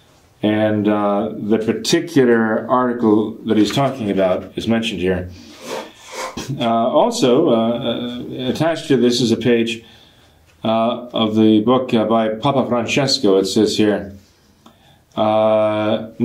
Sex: male